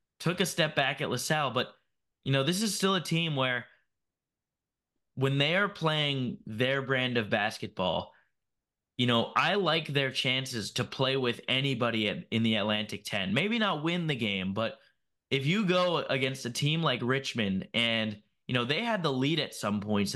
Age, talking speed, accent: 10-29, 180 wpm, American